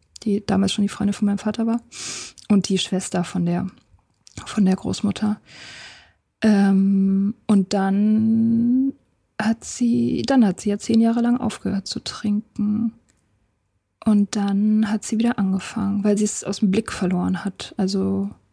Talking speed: 150 wpm